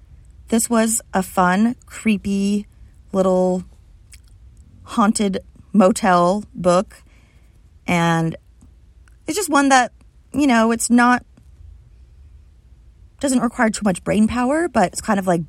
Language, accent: English, American